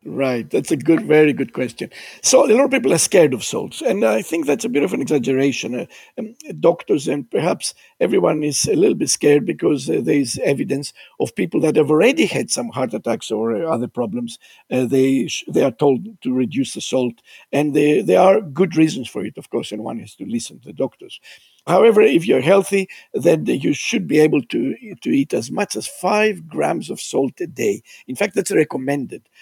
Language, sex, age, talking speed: English, male, 50-69, 215 wpm